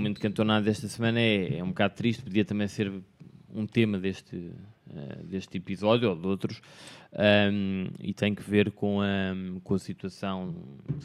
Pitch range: 95-105 Hz